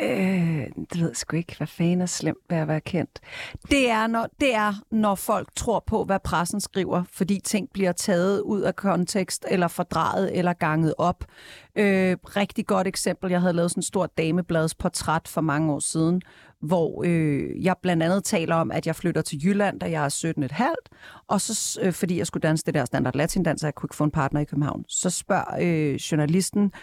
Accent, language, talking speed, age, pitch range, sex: native, Danish, 205 wpm, 40-59, 175-240 Hz, female